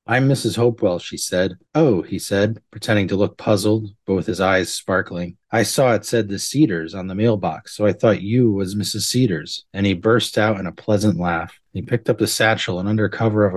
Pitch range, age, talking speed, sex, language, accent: 95-115 Hz, 30-49, 220 wpm, male, English, American